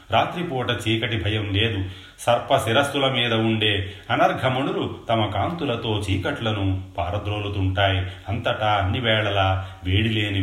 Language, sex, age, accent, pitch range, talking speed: Telugu, male, 30-49, native, 95-115 Hz, 90 wpm